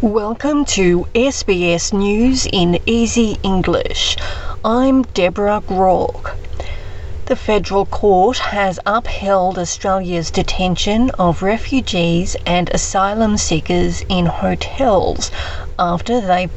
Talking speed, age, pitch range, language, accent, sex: 95 wpm, 40-59, 170-210 Hz, English, Australian, female